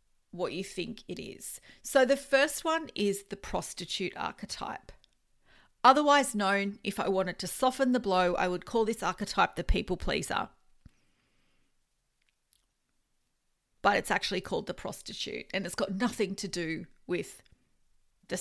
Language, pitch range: English, 190-245 Hz